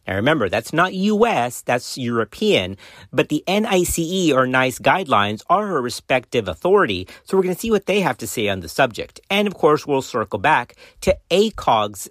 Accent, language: American, English